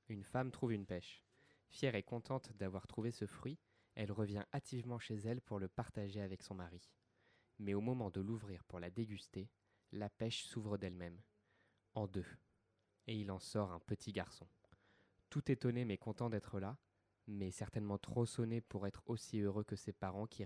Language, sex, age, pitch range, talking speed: French, male, 20-39, 100-115 Hz, 180 wpm